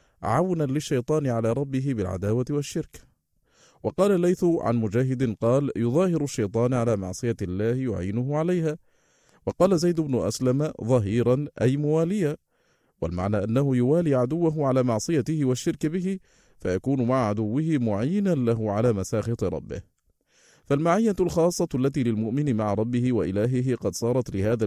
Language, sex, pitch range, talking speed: Arabic, male, 110-145 Hz, 125 wpm